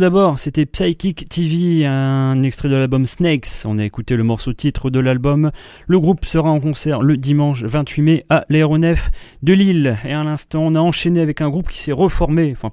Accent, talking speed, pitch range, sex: French, 205 wpm, 120-155 Hz, male